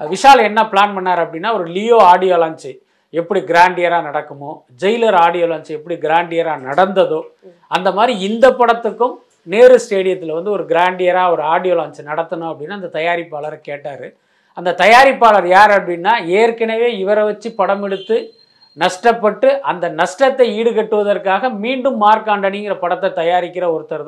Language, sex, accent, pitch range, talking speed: Tamil, male, native, 175-230 Hz, 130 wpm